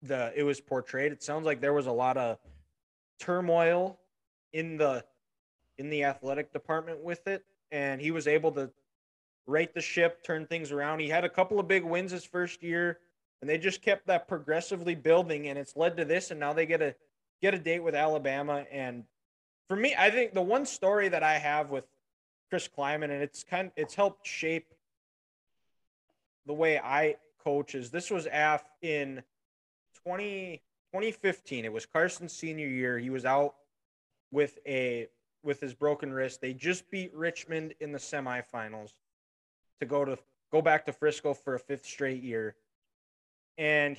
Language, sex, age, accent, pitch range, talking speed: English, male, 20-39, American, 130-165 Hz, 175 wpm